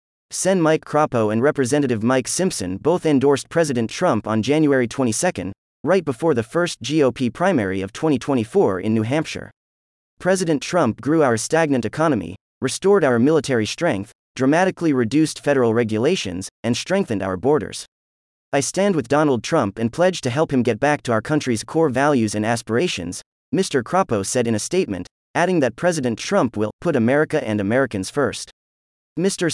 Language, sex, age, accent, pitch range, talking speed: English, male, 30-49, American, 110-160 Hz, 160 wpm